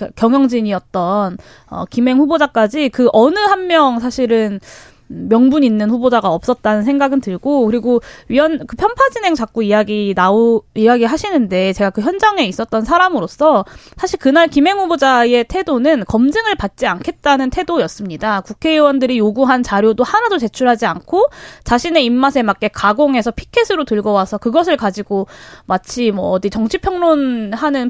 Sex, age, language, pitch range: female, 20-39, Korean, 215-320 Hz